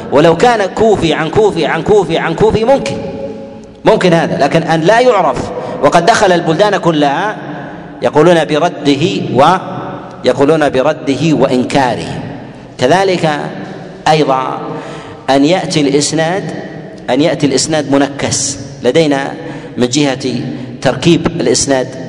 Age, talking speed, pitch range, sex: 40-59, 110 wpm, 145-185 Hz, male